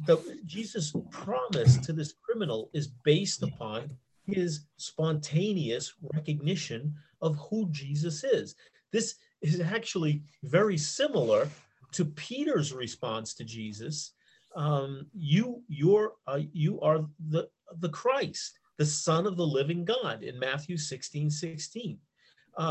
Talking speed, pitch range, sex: 115 wpm, 145-180 Hz, male